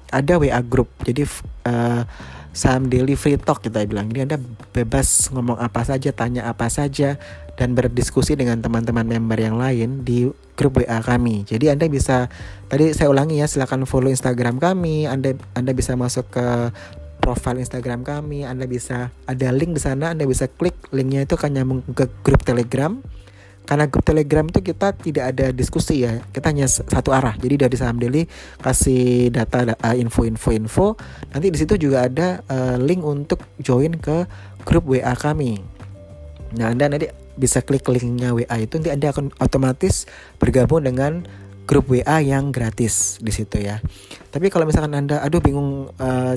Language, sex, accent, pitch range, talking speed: Indonesian, male, native, 115-145 Hz, 170 wpm